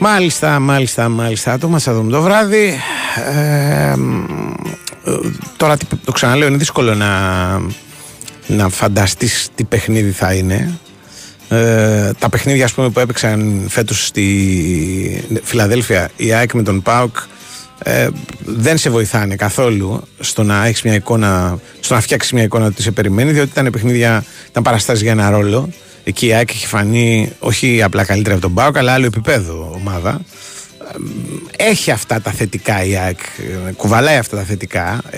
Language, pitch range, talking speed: Greek, 100-130 Hz, 145 wpm